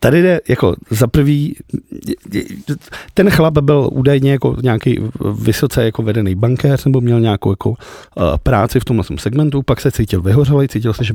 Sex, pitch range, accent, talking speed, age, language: male, 110-145 Hz, native, 160 wpm, 50-69, Czech